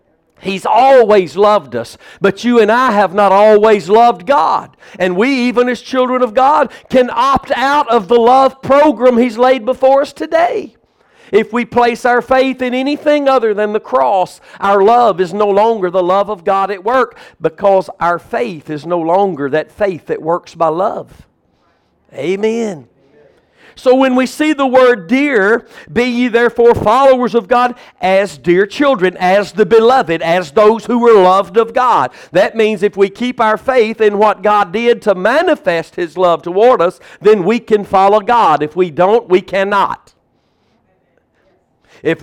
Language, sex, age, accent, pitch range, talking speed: English, male, 50-69, American, 195-245 Hz, 170 wpm